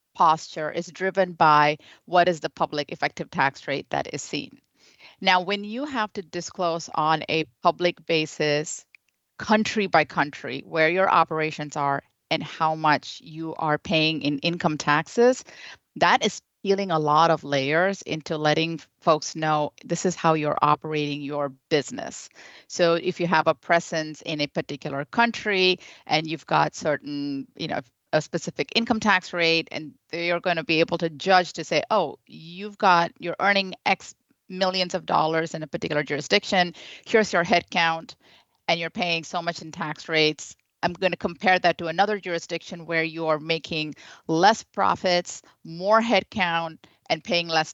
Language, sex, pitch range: English, female, 155-185 Hz